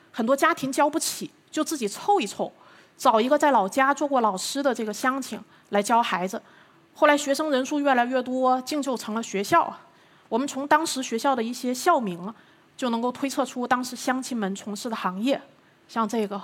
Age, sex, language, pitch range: 30-49, female, Chinese, 215-275 Hz